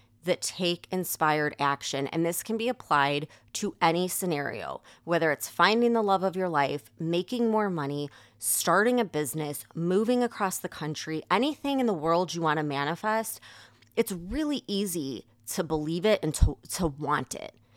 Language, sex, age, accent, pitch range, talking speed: English, female, 20-39, American, 140-195 Hz, 165 wpm